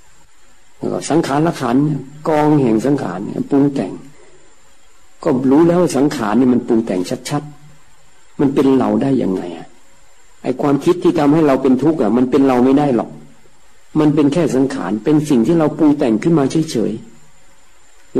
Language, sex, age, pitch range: Thai, male, 60-79, 120-150 Hz